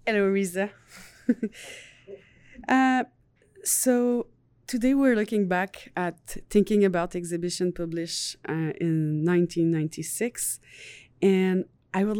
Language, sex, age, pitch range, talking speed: French, female, 20-39, 155-200 Hz, 90 wpm